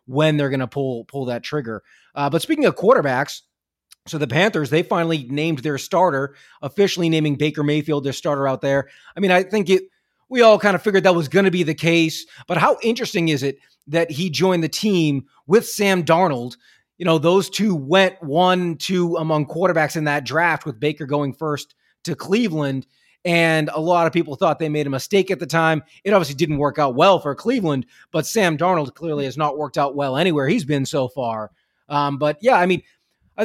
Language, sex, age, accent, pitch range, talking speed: English, male, 30-49, American, 140-180 Hz, 210 wpm